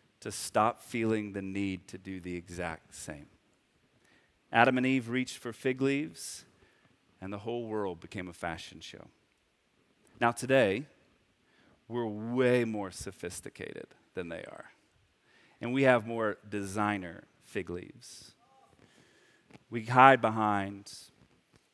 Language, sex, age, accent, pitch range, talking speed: English, male, 30-49, American, 95-125 Hz, 120 wpm